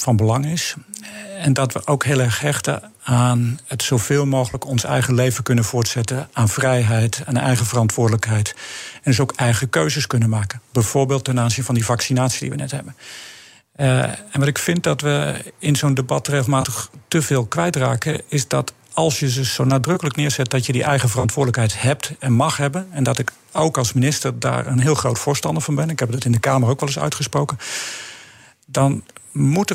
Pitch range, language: 125-145 Hz, Dutch